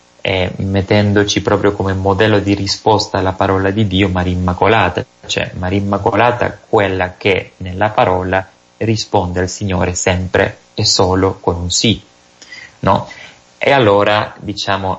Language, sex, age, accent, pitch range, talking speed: Italian, male, 30-49, native, 90-105 Hz, 130 wpm